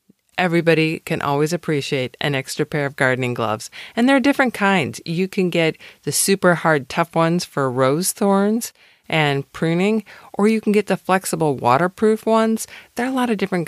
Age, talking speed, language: 50-69, 185 wpm, English